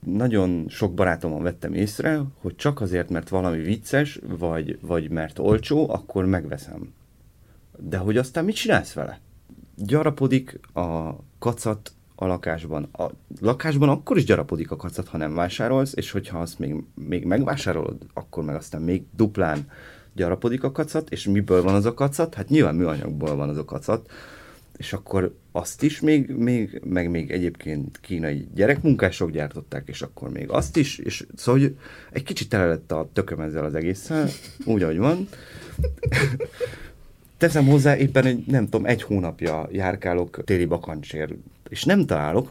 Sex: male